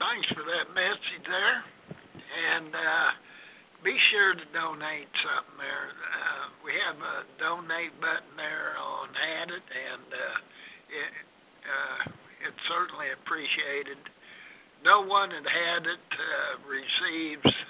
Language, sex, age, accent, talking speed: English, male, 60-79, American, 125 wpm